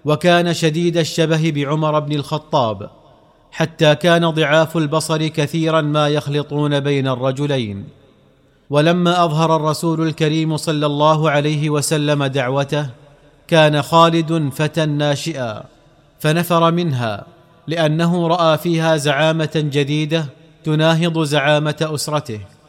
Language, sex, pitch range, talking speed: Arabic, male, 145-165 Hz, 100 wpm